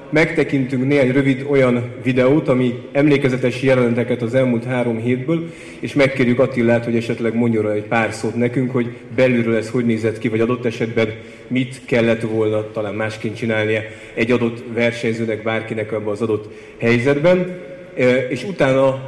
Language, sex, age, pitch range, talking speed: Hungarian, male, 30-49, 115-135 Hz, 150 wpm